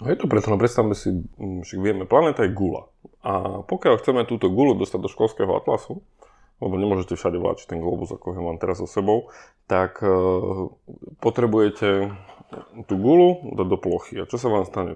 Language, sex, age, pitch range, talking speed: Slovak, male, 20-39, 95-120 Hz, 180 wpm